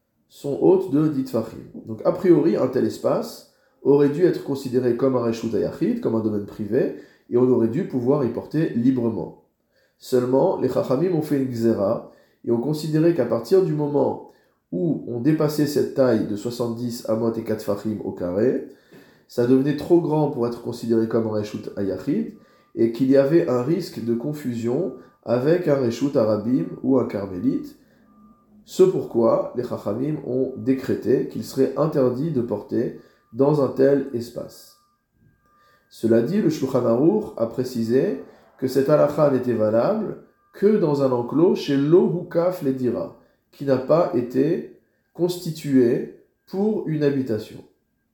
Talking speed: 155 wpm